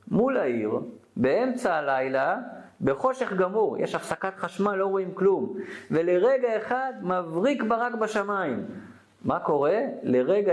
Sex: male